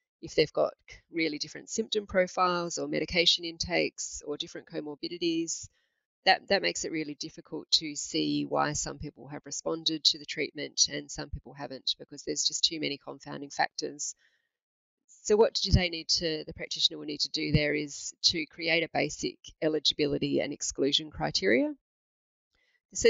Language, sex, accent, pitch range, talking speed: English, female, Australian, 155-225 Hz, 165 wpm